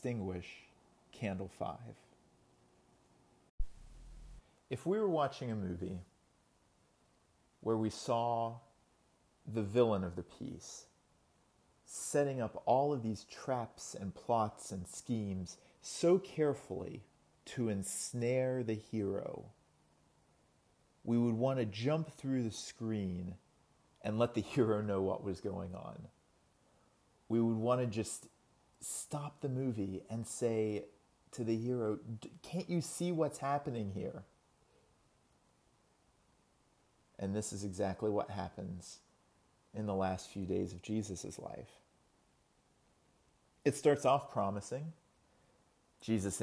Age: 40-59